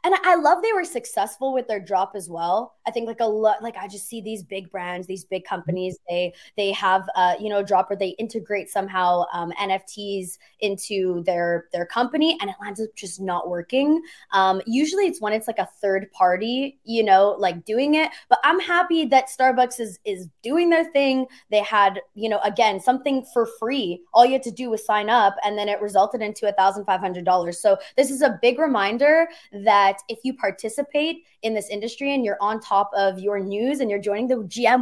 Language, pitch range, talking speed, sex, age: English, 195-260 Hz, 210 wpm, female, 20-39